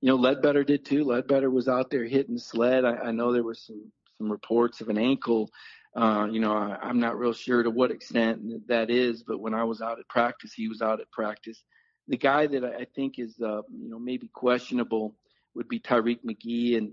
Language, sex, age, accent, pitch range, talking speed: English, male, 40-59, American, 110-120 Hz, 220 wpm